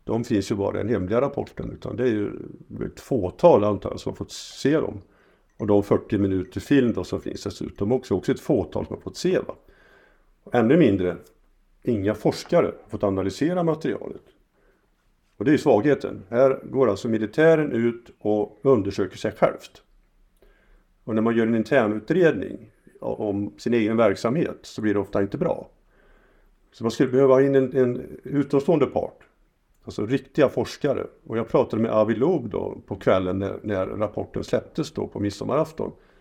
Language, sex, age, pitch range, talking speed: Swedish, male, 50-69, 100-125 Hz, 170 wpm